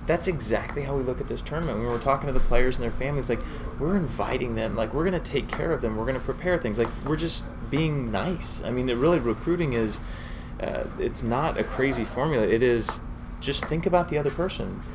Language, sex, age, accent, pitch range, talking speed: English, male, 20-39, American, 110-150 Hz, 230 wpm